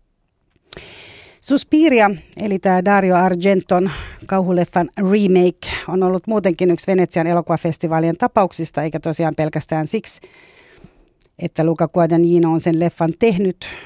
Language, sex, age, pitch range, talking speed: Finnish, female, 30-49, 155-185 Hz, 110 wpm